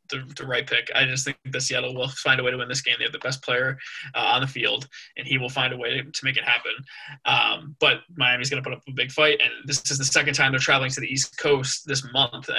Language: English